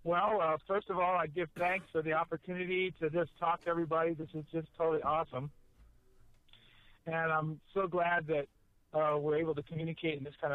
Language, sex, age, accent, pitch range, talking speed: English, male, 50-69, American, 135-160 Hz, 195 wpm